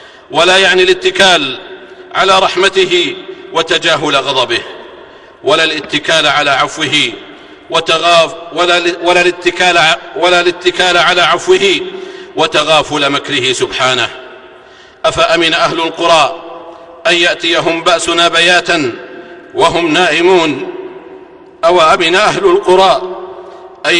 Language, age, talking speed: Arabic, 50-69, 75 wpm